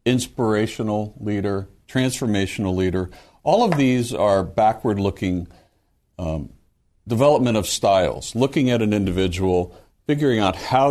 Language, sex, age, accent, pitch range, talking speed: English, male, 60-79, American, 90-120 Hz, 105 wpm